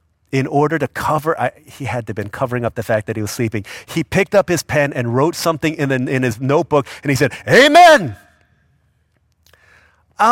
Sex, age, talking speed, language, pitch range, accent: male, 30-49, 210 wpm, English, 110-160 Hz, American